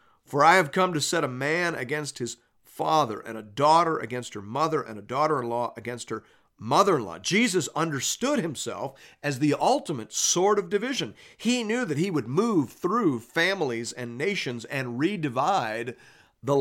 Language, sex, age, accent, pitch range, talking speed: English, male, 40-59, American, 125-175 Hz, 165 wpm